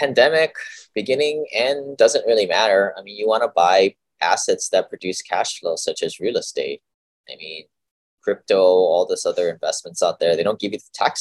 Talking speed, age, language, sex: 185 wpm, 20-39, English, male